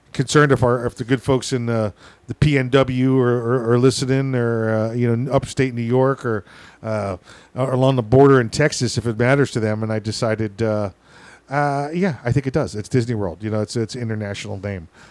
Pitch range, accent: 100-130 Hz, American